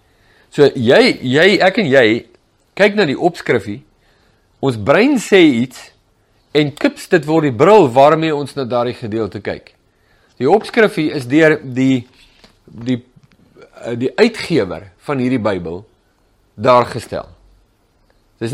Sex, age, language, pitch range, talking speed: male, 50-69, English, 115-175 Hz, 135 wpm